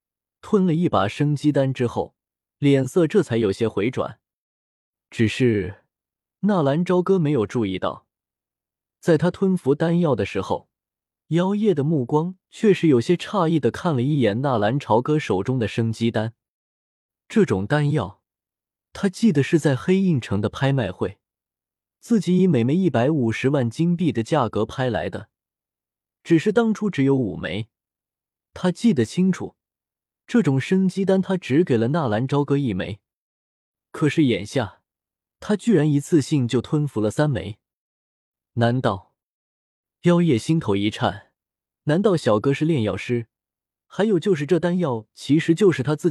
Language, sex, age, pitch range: Chinese, male, 20-39, 105-170 Hz